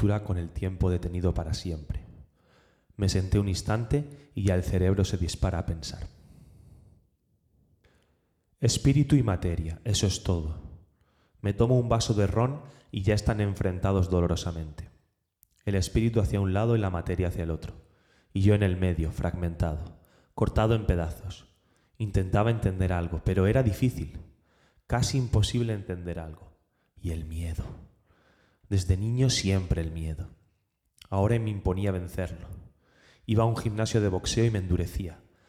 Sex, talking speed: male, 145 wpm